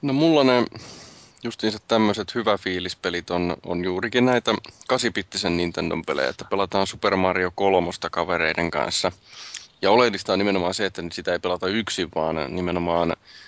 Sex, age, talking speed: male, 20-39, 140 wpm